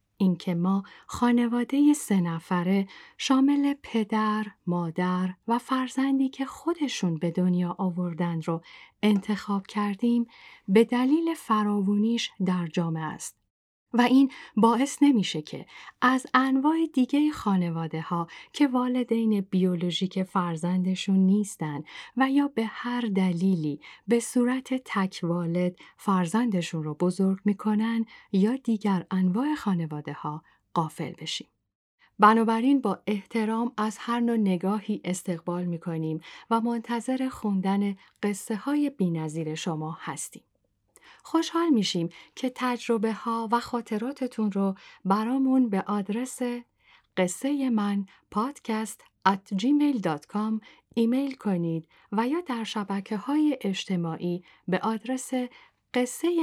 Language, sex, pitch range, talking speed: Persian, female, 180-245 Hz, 105 wpm